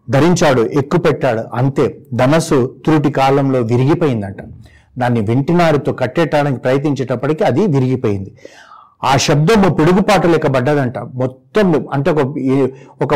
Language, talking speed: Telugu, 110 wpm